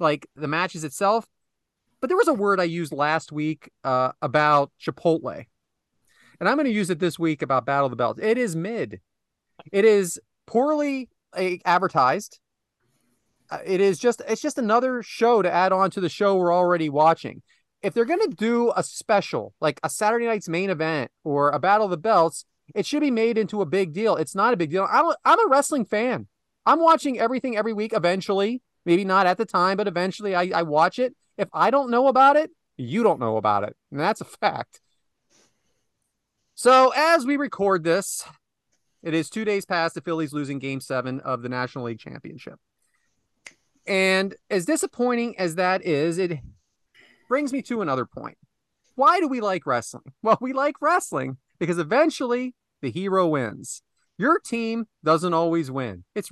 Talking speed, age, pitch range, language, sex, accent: 185 wpm, 30-49, 155-235 Hz, English, male, American